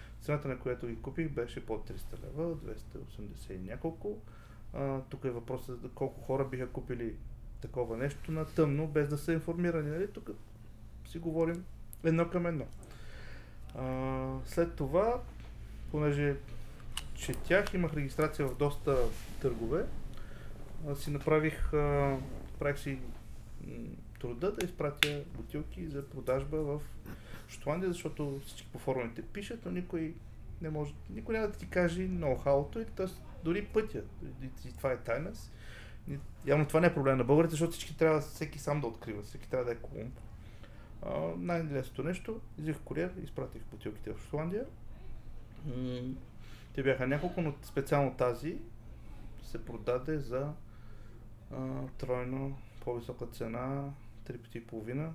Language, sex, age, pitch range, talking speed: Bulgarian, male, 30-49, 115-155 Hz, 140 wpm